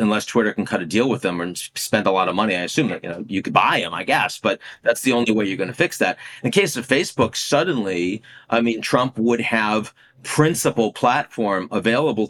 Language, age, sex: English, 40-59, male